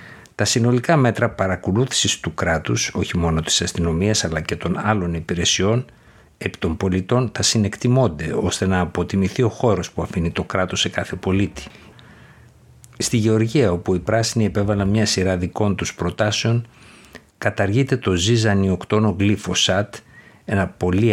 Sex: male